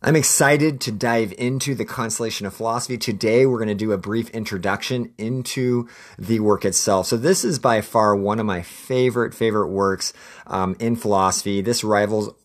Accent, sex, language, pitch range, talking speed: American, male, English, 95-110 Hz, 180 wpm